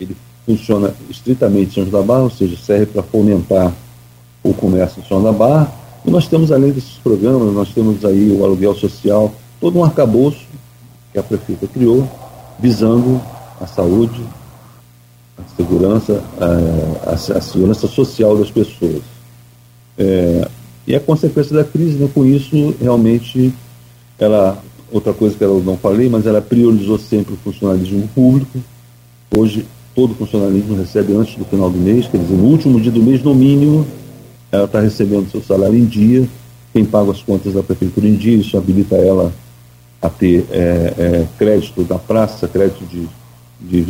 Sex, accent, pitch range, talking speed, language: male, Brazilian, 95-120 Hz, 160 wpm, Portuguese